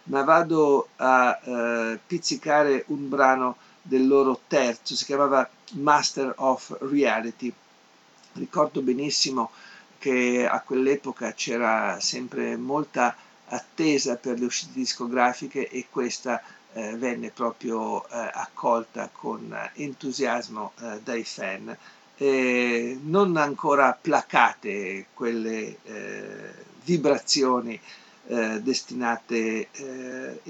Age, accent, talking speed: 50-69, native, 95 wpm